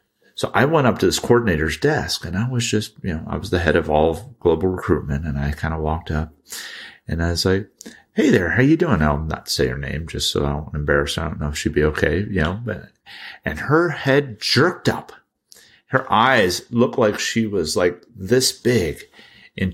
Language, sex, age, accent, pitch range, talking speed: English, male, 40-59, American, 75-105 Hz, 220 wpm